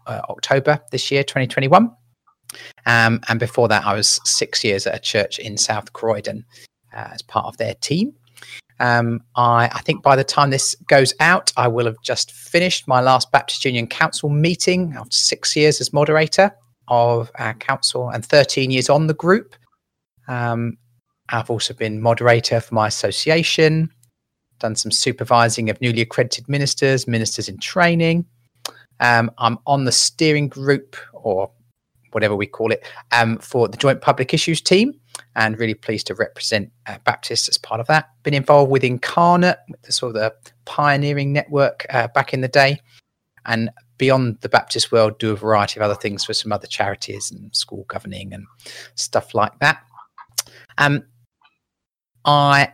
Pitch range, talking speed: 115-145 Hz, 165 wpm